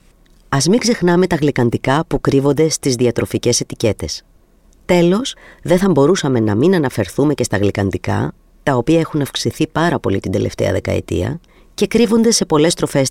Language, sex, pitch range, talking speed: Greek, female, 115-165 Hz, 155 wpm